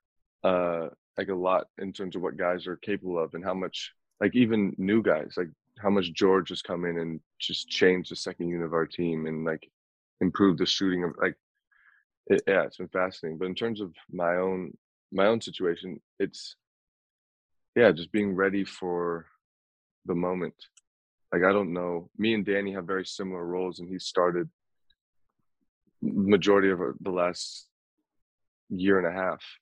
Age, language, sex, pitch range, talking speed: 20-39, English, male, 85-95 Hz, 175 wpm